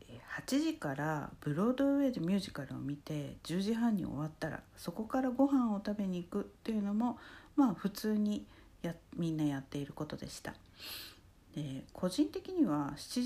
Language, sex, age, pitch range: Japanese, female, 60-79, 140-210 Hz